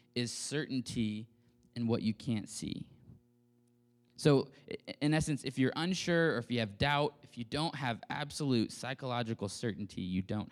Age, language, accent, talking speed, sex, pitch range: 20-39, English, American, 155 wpm, male, 115-140 Hz